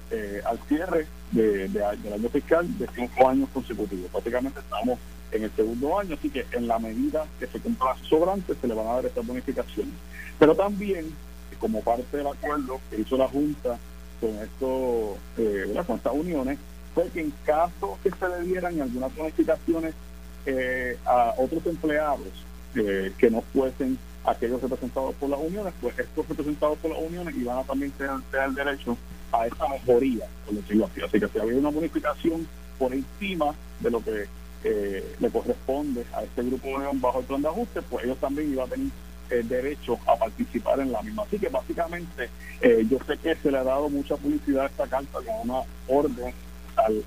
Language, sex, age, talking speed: Spanish, male, 50-69, 180 wpm